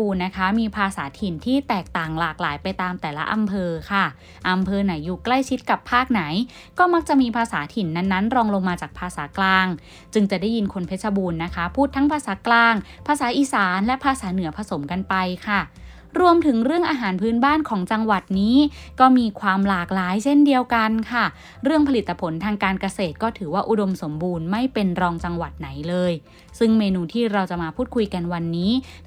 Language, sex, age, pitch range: Thai, female, 20-39, 180-240 Hz